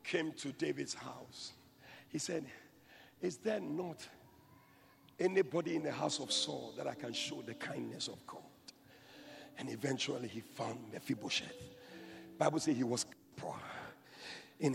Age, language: 50-69, English